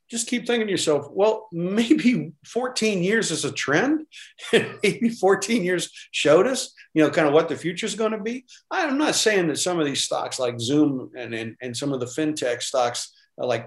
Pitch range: 145-215 Hz